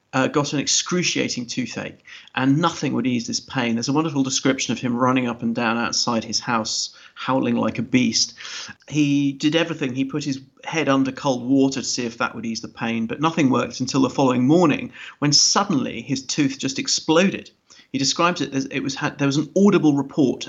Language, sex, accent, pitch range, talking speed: English, male, British, 130-155 Hz, 205 wpm